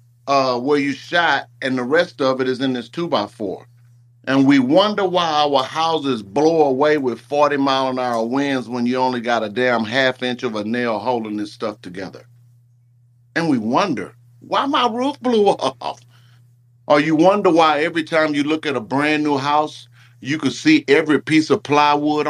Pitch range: 120-155 Hz